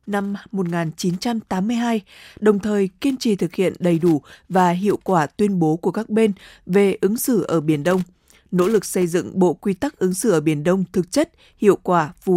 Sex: female